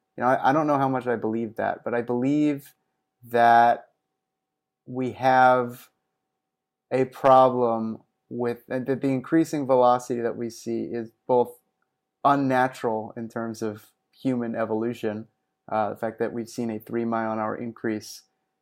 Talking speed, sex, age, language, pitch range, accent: 155 wpm, male, 30-49, English, 115-145 Hz, American